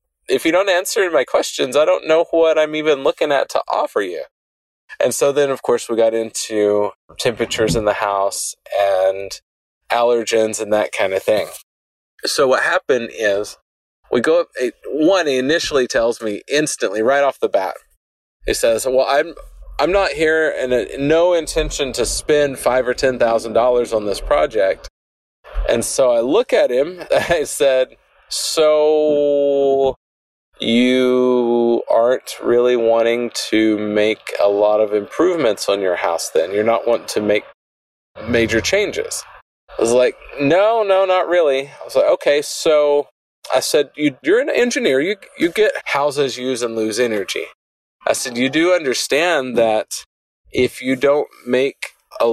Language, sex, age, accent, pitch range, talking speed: English, male, 30-49, American, 110-155 Hz, 160 wpm